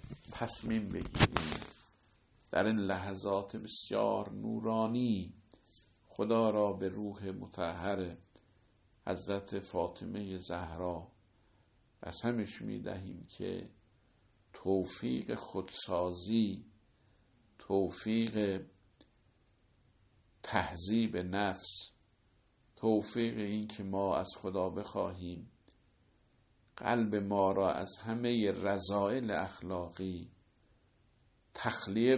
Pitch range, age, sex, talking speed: 95-110 Hz, 50-69, male, 70 wpm